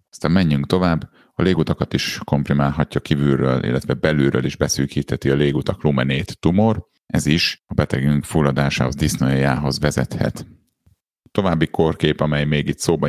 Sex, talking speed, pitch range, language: male, 135 wpm, 65-75 Hz, Hungarian